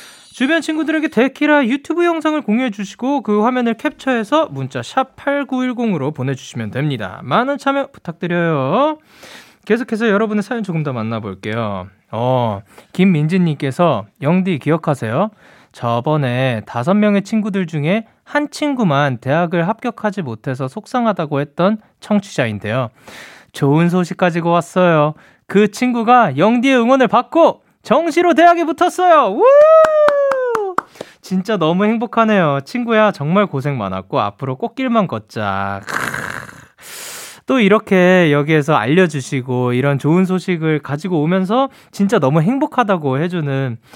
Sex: male